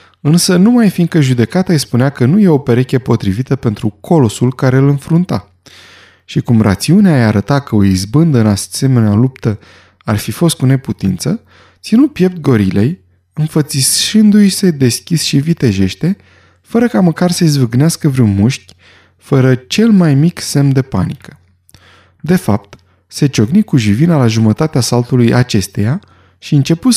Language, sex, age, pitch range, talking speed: Romanian, male, 20-39, 110-155 Hz, 150 wpm